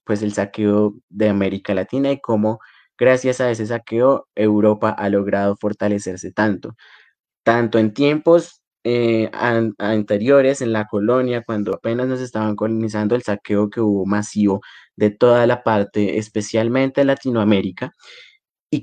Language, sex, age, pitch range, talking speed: Spanish, male, 20-39, 105-125 Hz, 135 wpm